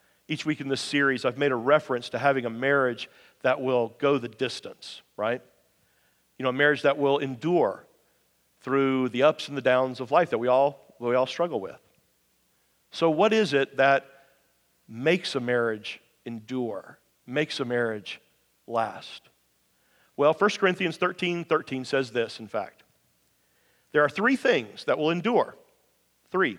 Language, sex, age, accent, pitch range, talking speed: English, male, 50-69, American, 130-175 Hz, 160 wpm